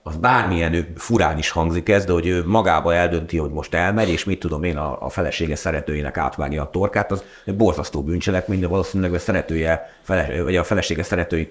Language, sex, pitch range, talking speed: Hungarian, male, 75-95 Hz, 195 wpm